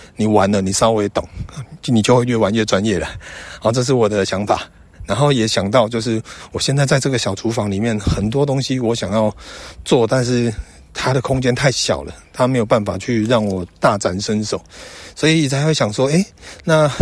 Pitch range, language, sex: 95-120 Hz, Chinese, male